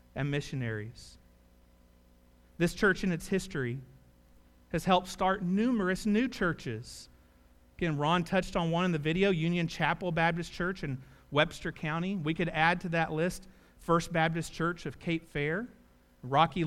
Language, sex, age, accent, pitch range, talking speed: English, male, 40-59, American, 120-185 Hz, 150 wpm